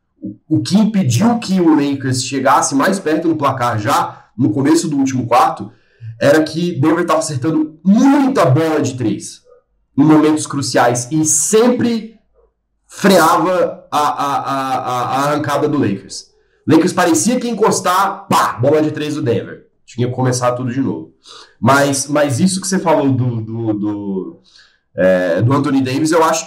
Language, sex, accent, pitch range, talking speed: Portuguese, male, Brazilian, 135-195 Hz, 150 wpm